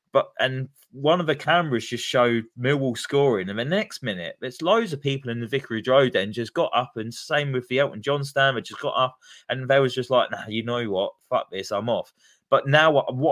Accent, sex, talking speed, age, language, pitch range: British, male, 235 wpm, 20-39, English, 115-140 Hz